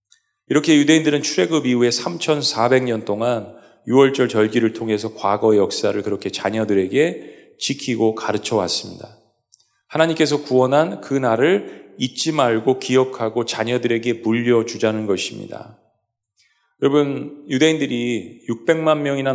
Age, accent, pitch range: 40-59, native, 115-150 Hz